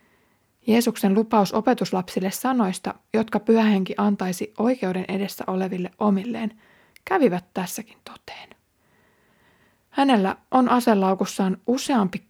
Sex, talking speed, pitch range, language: female, 90 wpm, 195-235 Hz, Finnish